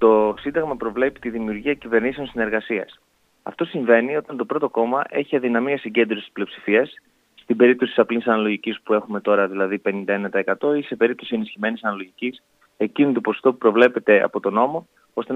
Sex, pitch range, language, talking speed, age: male, 105-130 Hz, Greek, 160 wpm, 20-39